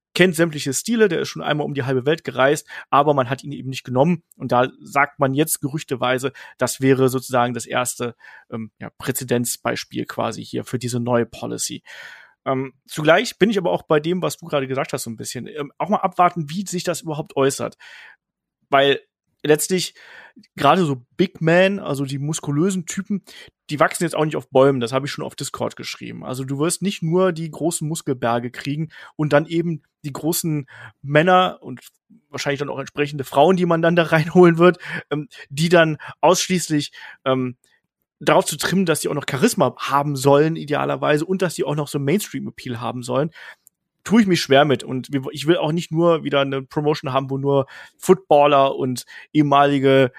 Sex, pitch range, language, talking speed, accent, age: male, 135-170 Hz, German, 190 wpm, German, 30-49